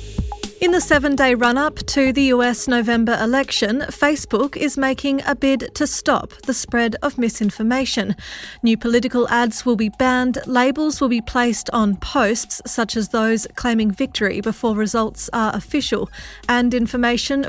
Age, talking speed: 30-49, 150 wpm